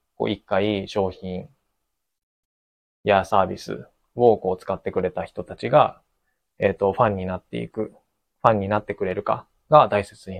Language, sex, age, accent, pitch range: Japanese, male, 20-39, native, 95-110 Hz